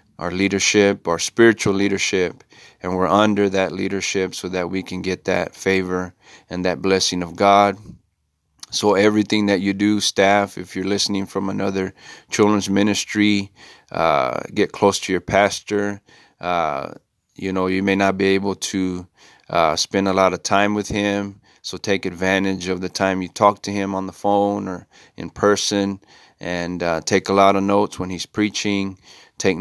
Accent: American